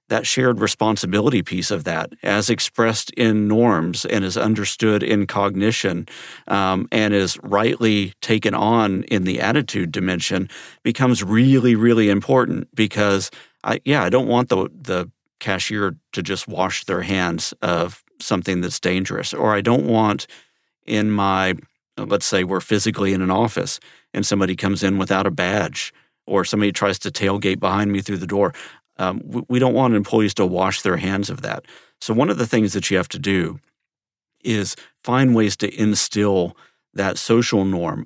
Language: English